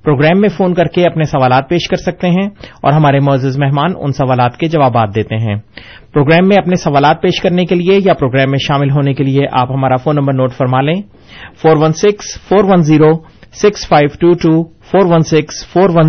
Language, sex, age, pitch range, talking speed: Urdu, male, 30-49, 135-175 Hz, 170 wpm